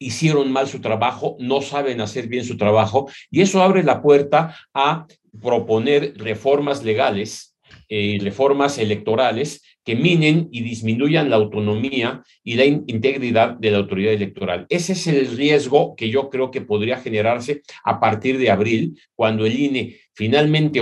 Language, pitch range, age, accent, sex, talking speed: Spanish, 110-145 Hz, 40-59, Mexican, male, 155 wpm